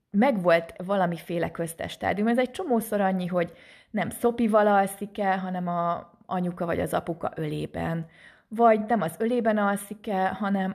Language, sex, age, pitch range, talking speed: Hungarian, female, 30-49, 170-215 Hz, 140 wpm